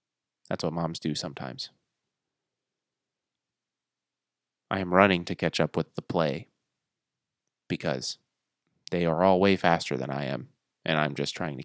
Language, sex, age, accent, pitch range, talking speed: English, male, 20-39, American, 80-90 Hz, 145 wpm